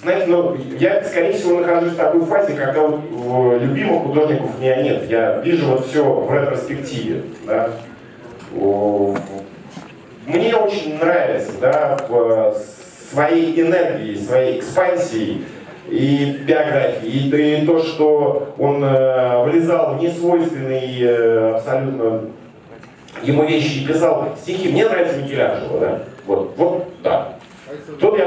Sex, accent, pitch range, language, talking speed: male, native, 115-170 Hz, Russian, 130 wpm